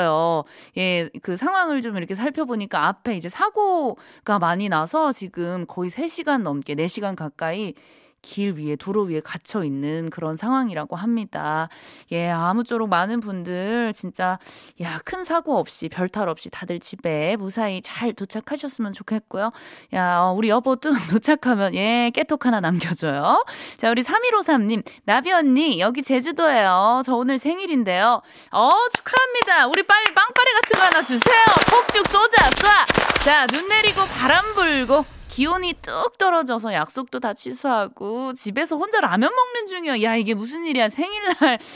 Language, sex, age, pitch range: Korean, female, 20-39, 210-325 Hz